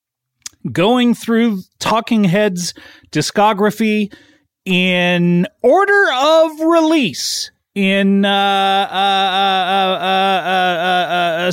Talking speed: 55 wpm